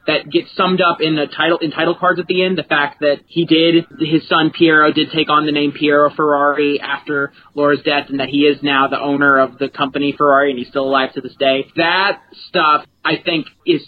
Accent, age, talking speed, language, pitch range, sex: American, 30-49, 235 wpm, English, 135-165 Hz, male